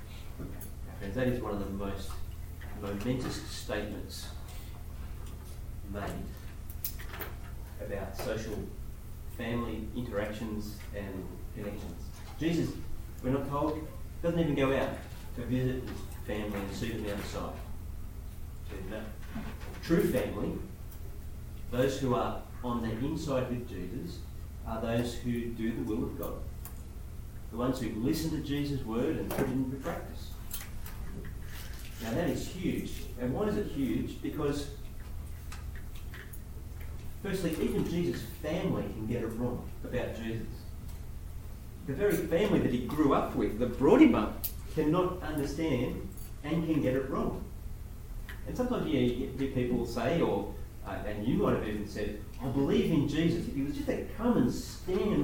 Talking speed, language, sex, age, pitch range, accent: 140 wpm, English, male, 30-49, 95-130 Hz, Australian